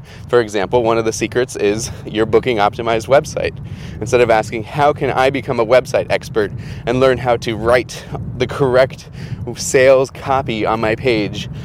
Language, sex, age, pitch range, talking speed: English, male, 20-39, 115-135 Hz, 165 wpm